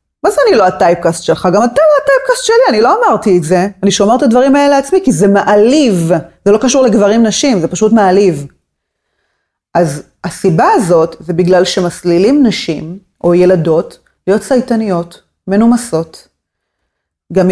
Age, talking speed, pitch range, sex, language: 30-49, 160 wpm, 175-240 Hz, female, Hebrew